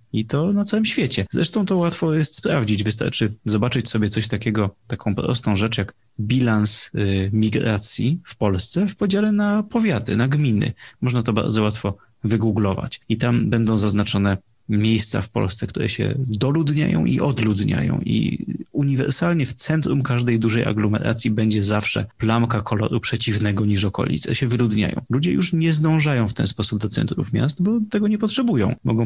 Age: 30-49